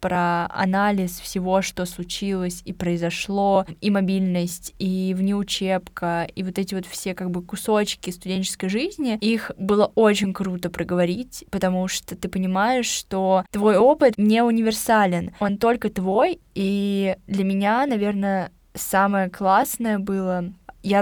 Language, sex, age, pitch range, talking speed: Russian, female, 10-29, 190-215 Hz, 130 wpm